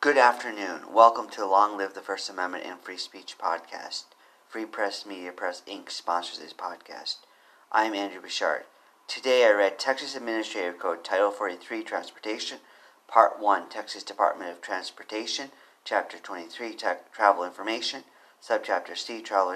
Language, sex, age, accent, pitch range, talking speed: English, male, 40-59, American, 105-140 Hz, 140 wpm